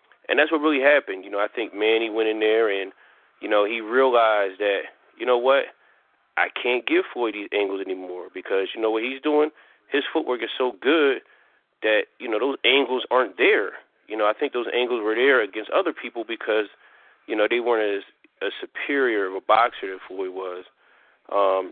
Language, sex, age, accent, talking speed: English, male, 30-49, American, 200 wpm